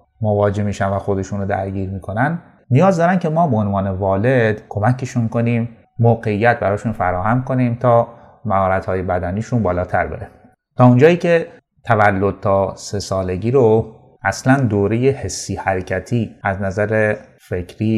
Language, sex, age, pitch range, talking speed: Persian, male, 30-49, 100-130 Hz, 135 wpm